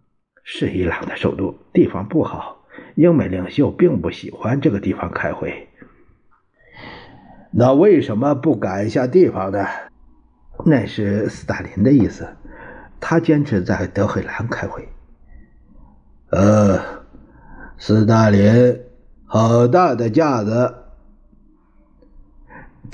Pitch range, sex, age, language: 95-135 Hz, male, 60-79, Chinese